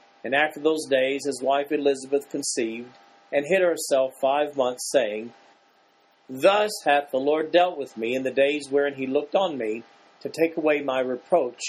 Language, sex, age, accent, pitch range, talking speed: English, male, 50-69, American, 130-175 Hz, 175 wpm